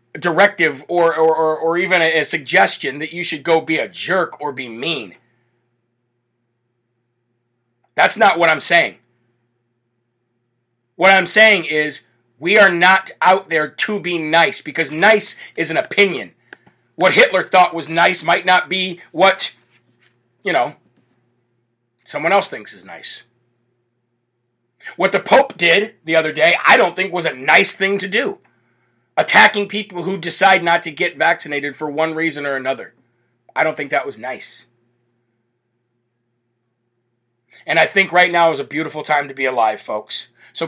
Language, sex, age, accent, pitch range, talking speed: English, male, 40-59, American, 120-170 Hz, 155 wpm